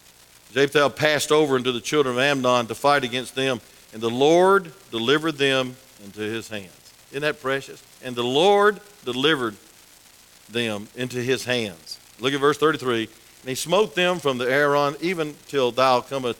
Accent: American